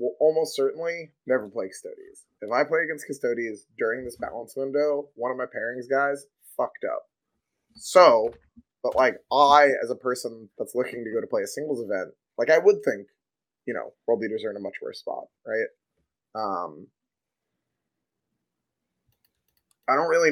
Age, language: 20-39, English